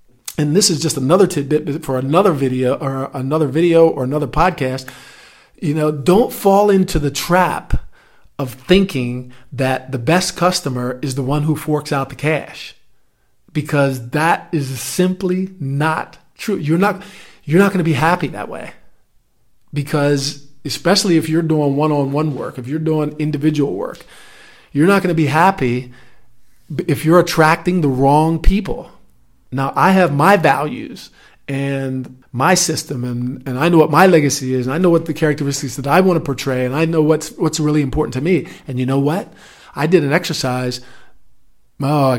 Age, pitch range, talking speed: 50-69, 135-170 Hz, 175 wpm